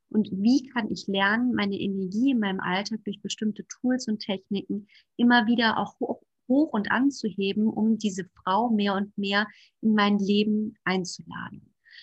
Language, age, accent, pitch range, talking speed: German, 30-49, German, 195-225 Hz, 160 wpm